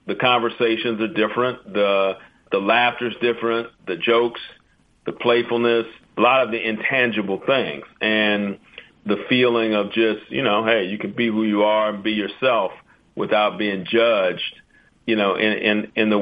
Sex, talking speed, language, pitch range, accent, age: male, 165 wpm, English, 105-115 Hz, American, 50-69